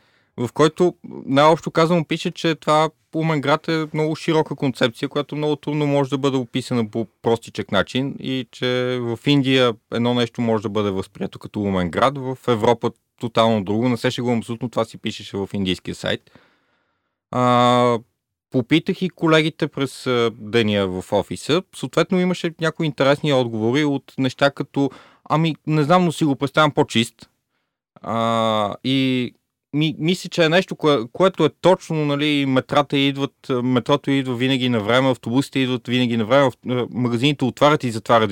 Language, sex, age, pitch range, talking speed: Bulgarian, male, 30-49, 105-150 Hz, 155 wpm